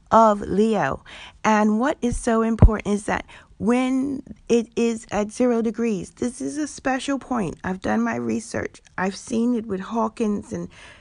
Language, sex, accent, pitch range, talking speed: English, female, American, 195-230 Hz, 165 wpm